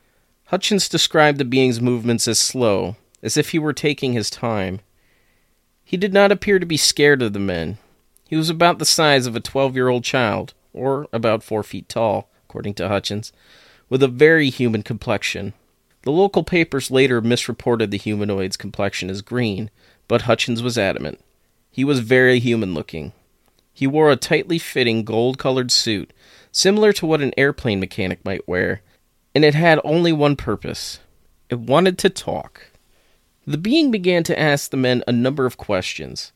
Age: 30-49